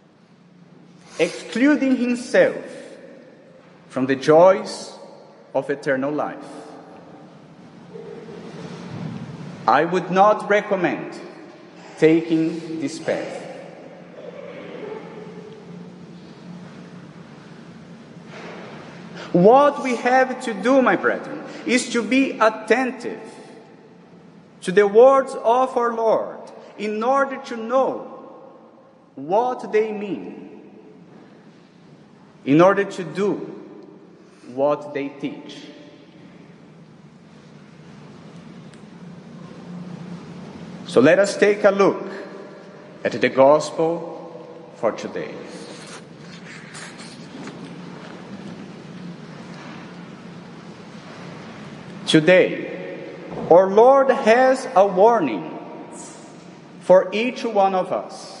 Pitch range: 180-240 Hz